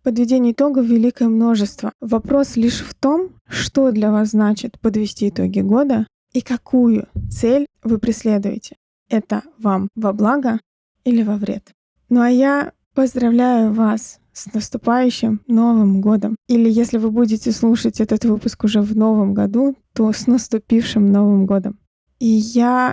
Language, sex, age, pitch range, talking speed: Russian, female, 20-39, 215-245 Hz, 140 wpm